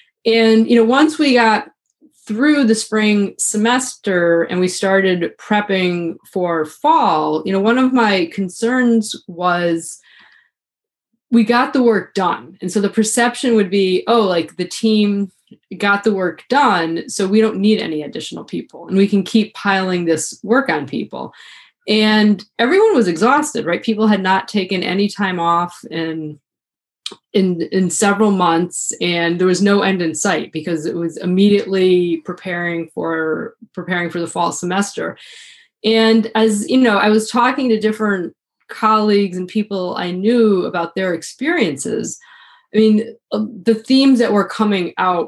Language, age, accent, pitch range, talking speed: English, 20-39, American, 175-220 Hz, 155 wpm